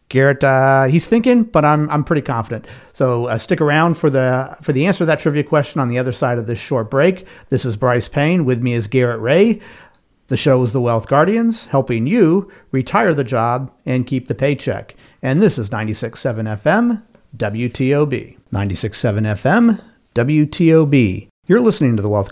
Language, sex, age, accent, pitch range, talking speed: English, male, 50-69, American, 120-165 Hz, 185 wpm